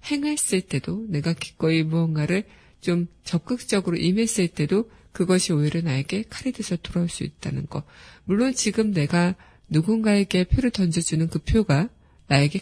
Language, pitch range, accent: Korean, 165-210 Hz, native